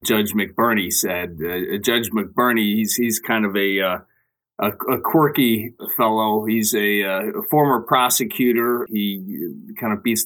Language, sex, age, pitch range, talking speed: English, male, 30-49, 105-125 Hz, 145 wpm